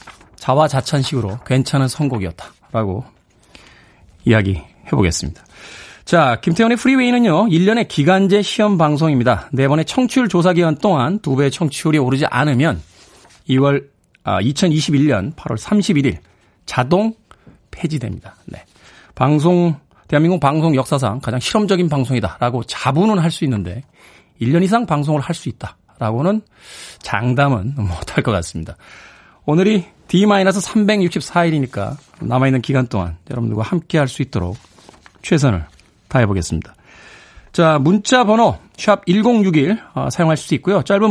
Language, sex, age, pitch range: Korean, male, 40-59, 115-175 Hz